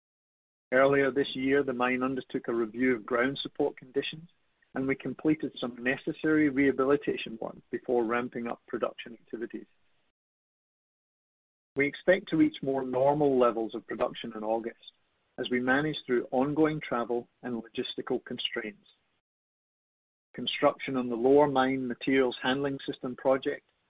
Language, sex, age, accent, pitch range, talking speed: English, male, 50-69, British, 120-140 Hz, 135 wpm